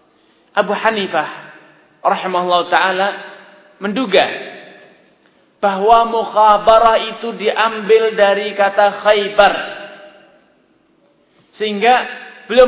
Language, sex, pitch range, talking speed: Malay, male, 190-225 Hz, 65 wpm